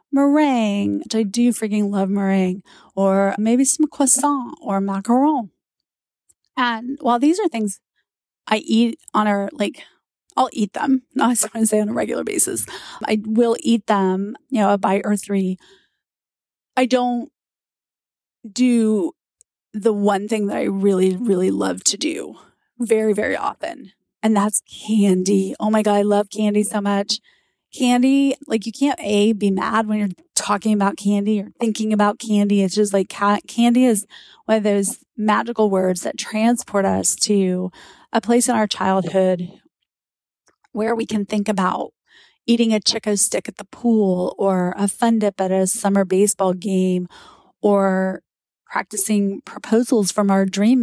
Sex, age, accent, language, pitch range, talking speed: female, 30-49, American, English, 195-235 Hz, 160 wpm